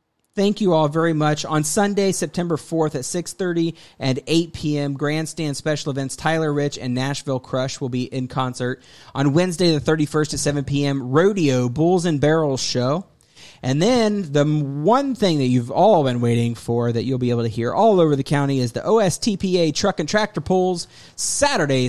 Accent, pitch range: American, 130-170 Hz